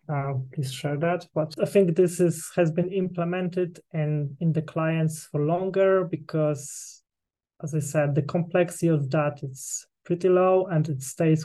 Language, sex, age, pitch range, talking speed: English, male, 20-39, 150-175 Hz, 175 wpm